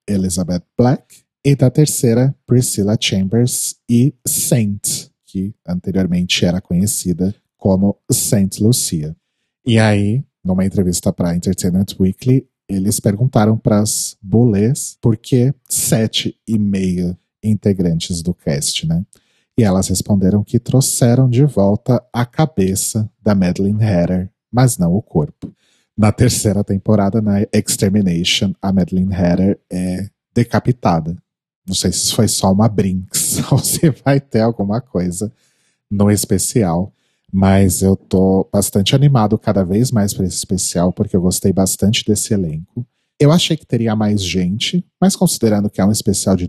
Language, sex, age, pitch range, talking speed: Portuguese, male, 40-59, 95-120 Hz, 140 wpm